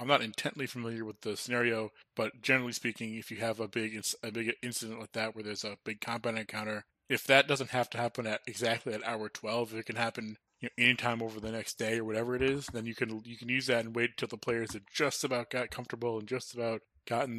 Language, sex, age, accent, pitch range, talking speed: English, male, 20-39, American, 110-120 Hz, 250 wpm